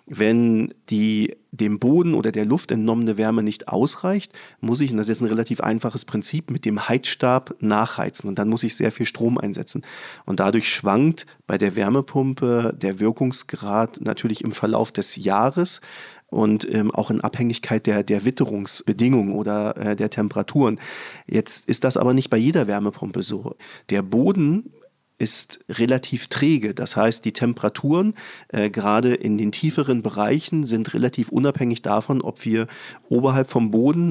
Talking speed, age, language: 160 wpm, 40-59, German